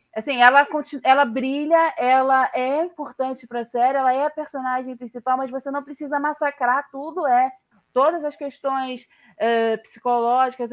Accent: Brazilian